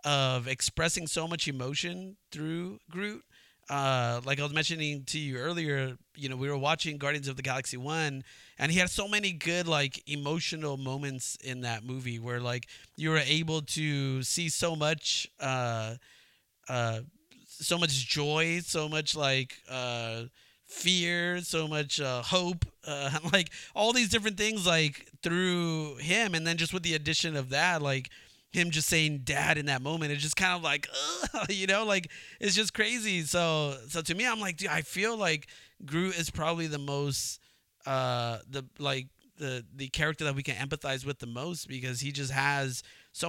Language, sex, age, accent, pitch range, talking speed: English, male, 30-49, American, 130-165 Hz, 180 wpm